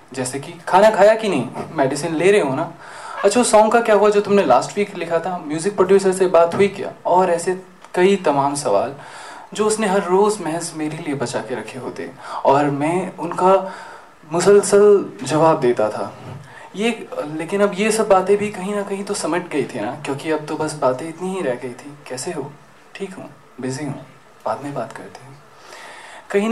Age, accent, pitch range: 20-39, native, 155-200 Hz